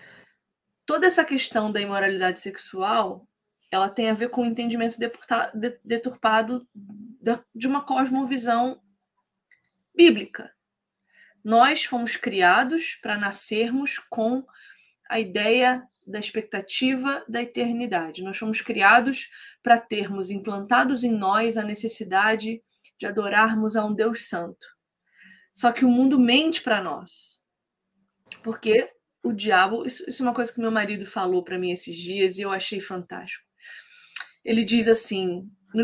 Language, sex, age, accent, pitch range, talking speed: Portuguese, female, 20-39, Brazilian, 205-255 Hz, 130 wpm